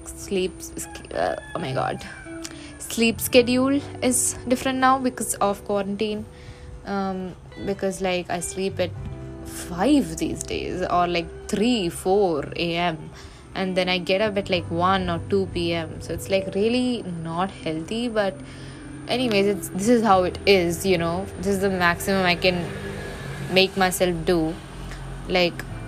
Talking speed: 145 wpm